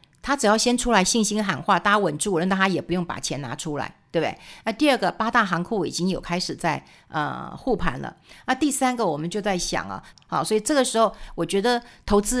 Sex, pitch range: female, 170-220 Hz